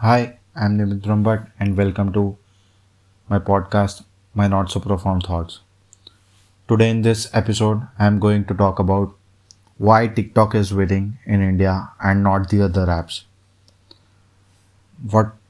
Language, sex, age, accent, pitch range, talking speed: English, male, 20-39, Indian, 95-105 Hz, 135 wpm